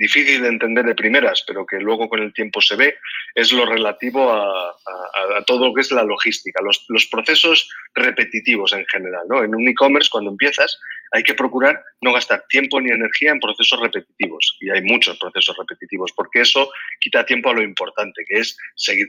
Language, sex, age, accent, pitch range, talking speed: English, male, 30-49, Spanish, 115-165 Hz, 200 wpm